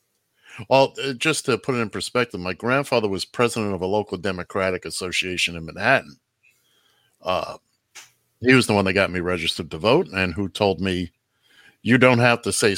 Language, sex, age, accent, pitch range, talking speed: English, male, 50-69, American, 95-125 Hz, 180 wpm